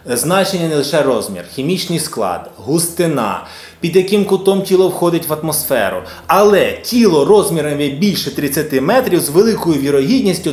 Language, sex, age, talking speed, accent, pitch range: Ukrainian, male, 20-39, 130 wpm, native, 140-210 Hz